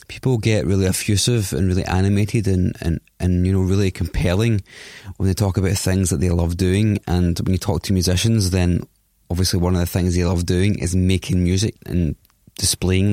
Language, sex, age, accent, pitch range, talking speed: English, male, 20-39, British, 85-100 Hz, 190 wpm